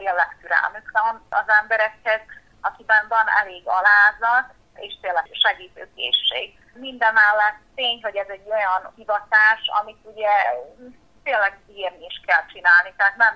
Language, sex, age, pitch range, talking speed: Hungarian, female, 30-49, 195-225 Hz, 125 wpm